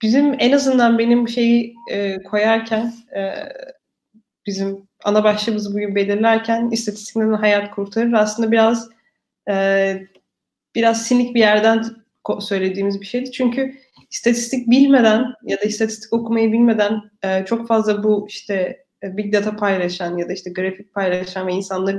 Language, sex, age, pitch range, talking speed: Turkish, female, 20-39, 200-235 Hz, 135 wpm